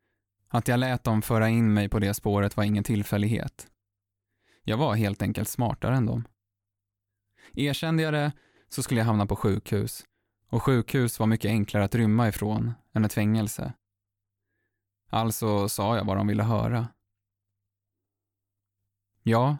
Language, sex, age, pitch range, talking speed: Swedish, male, 20-39, 100-120 Hz, 145 wpm